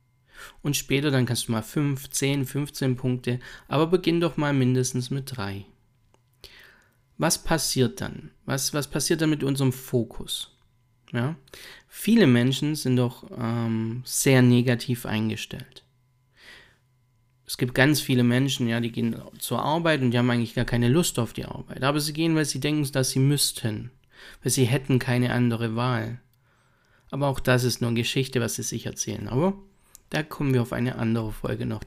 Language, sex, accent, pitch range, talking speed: German, male, German, 120-145 Hz, 170 wpm